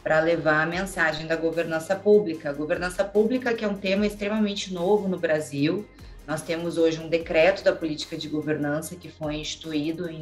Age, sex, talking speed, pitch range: 30-49, female, 175 wpm, 165-220 Hz